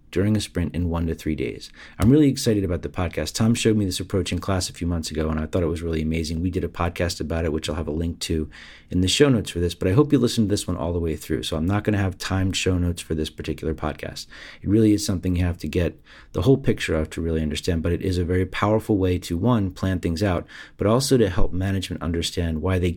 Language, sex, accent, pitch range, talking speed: English, male, American, 80-105 Hz, 285 wpm